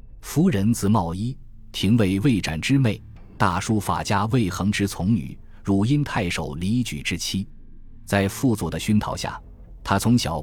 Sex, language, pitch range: male, Chinese, 85-115 Hz